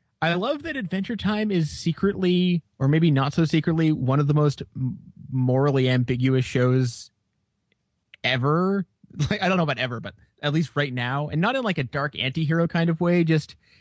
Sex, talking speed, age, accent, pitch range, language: male, 180 wpm, 20-39, American, 125-160 Hz, English